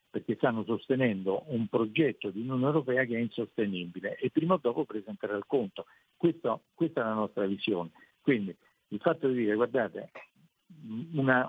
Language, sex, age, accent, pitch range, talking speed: Italian, male, 50-69, native, 110-150 Hz, 160 wpm